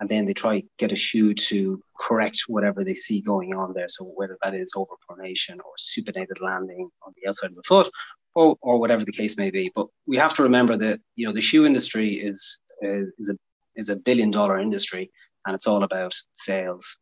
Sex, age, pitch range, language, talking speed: male, 30-49, 100-135 Hz, English, 220 wpm